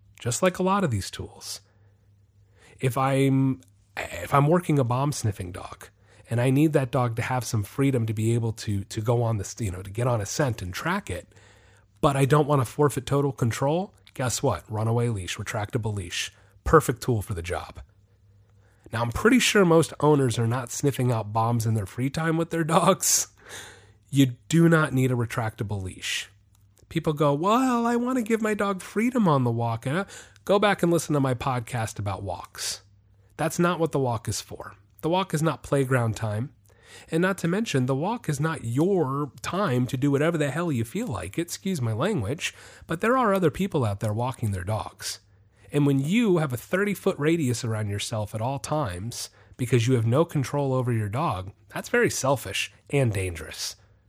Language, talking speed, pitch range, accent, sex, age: English, 200 wpm, 105-150 Hz, American, male, 30-49